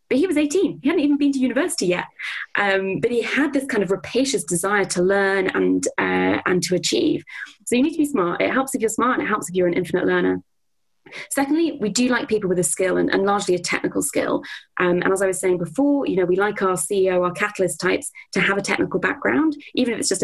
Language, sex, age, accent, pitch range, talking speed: English, female, 20-39, British, 180-255 Hz, 250 wpm